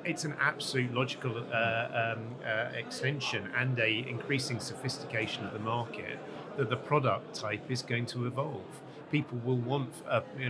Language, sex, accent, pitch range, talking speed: English, male, British, 115-135 Hz, 160 wpm